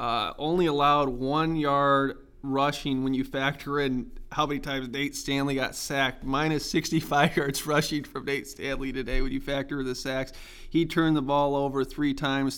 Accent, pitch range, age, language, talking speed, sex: American, 130-145 Hz, 20-39, English, 175 wpm, male